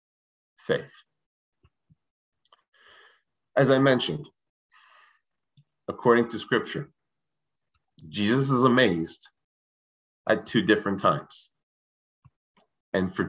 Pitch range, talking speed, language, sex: 95-135 Hz, 70 wpm, English, male